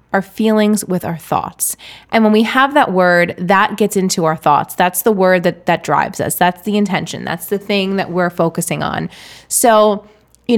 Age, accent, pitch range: 20-39, American, 180-220 Hz